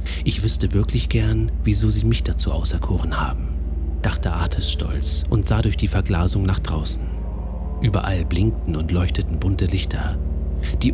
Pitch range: 75-100 Hz